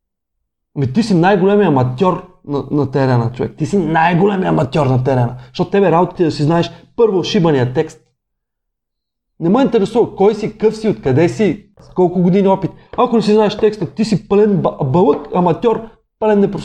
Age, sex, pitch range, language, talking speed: 30-49, male, 145-205 Hz, Bulgarian, 175 wpm